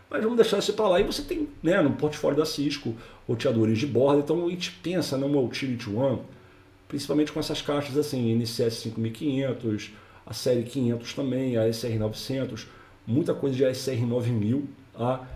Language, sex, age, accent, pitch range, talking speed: Portuguese, male, 40-59, Brazilian, 110-140 Hz, 170 wpm